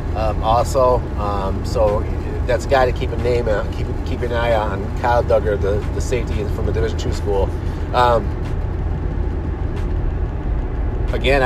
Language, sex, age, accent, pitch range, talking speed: English, male, 30-49, American, 85-110 Hz, 150 wpm